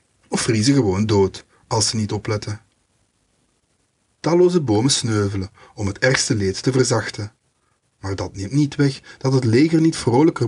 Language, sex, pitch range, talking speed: English, male, 105-135 Hz, 155 wpm